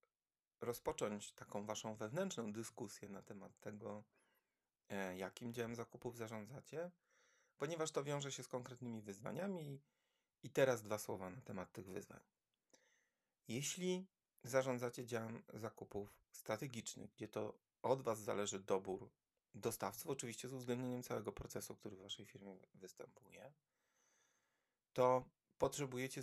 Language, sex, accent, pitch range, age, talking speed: Polish, male, native, 105-130 Hz, 30-49, 115 wpm